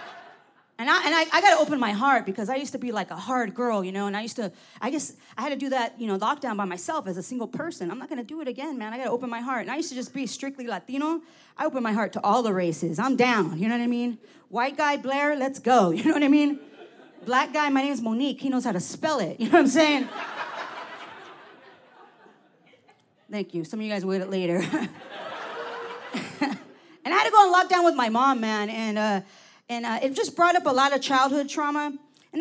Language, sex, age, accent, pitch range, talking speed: English, female, 30-49, American, 215-290 Hz, 255 wpm